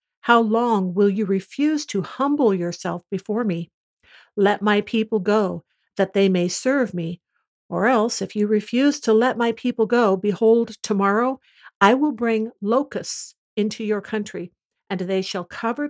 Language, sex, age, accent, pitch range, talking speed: English, female, 50-69, American, 185-230 Hz, 160 wpm